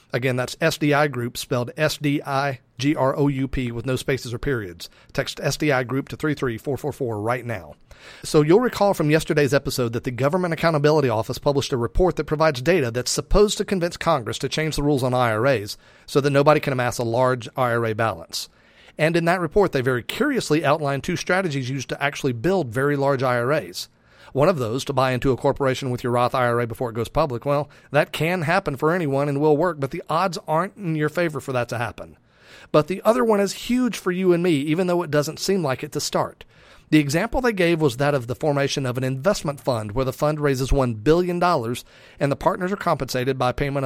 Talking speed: 220 wpm